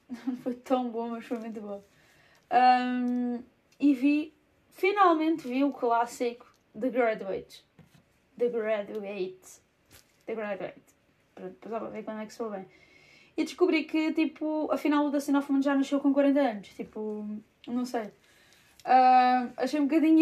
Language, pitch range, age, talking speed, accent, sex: Portuguese, 220-265 Hz, 20-39, 140 wpm, Brazilian, female